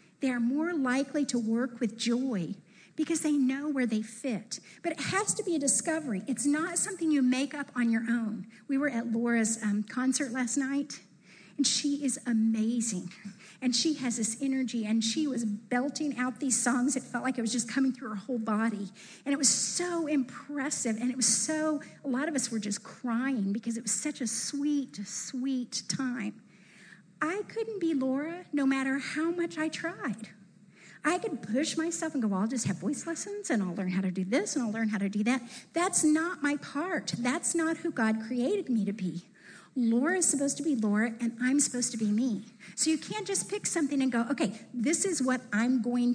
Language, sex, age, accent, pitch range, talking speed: English, female, 50-69, American, 220-290 Hz, 210 wpm